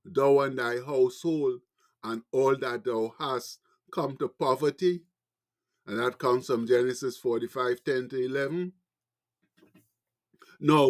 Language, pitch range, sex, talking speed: English, 135-195 Hz, male, 120 wpm